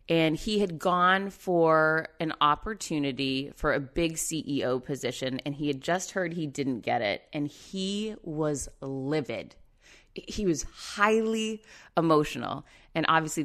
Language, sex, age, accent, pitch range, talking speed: English, female, 30-49, American, 140-185 Hz, 140 wpm